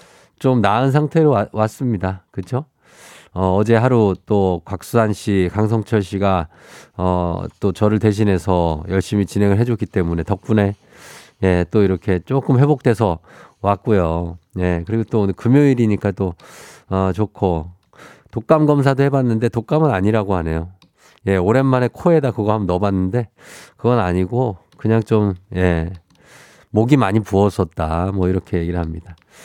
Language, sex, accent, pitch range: Korean, male, native, 90-120 Hz